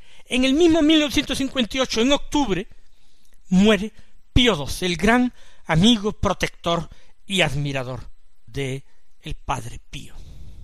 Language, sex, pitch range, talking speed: Spanish, male, 155-240 Hz, 105 wpm